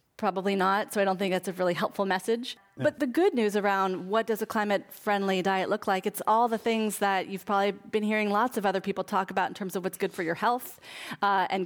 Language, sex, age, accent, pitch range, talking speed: English, female, 30-49, American, 185-215 Hz, 245 wpm